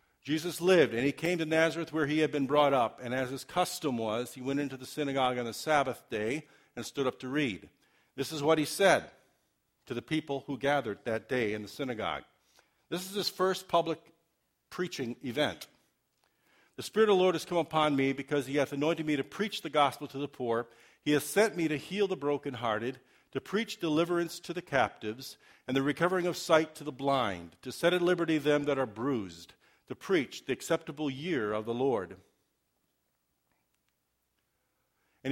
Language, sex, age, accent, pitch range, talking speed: English, male, 50-69, American, 125-160 Hz, 195 wpm